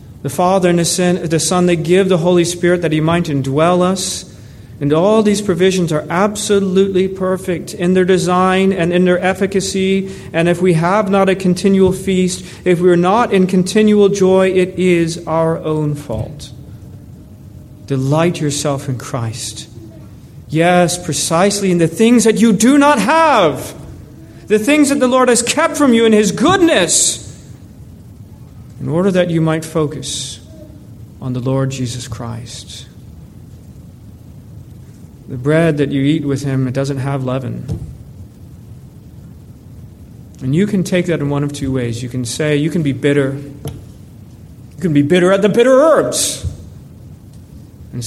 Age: 40-59